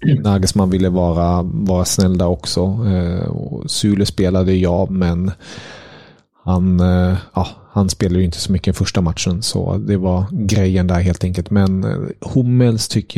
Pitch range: 90-105 Hz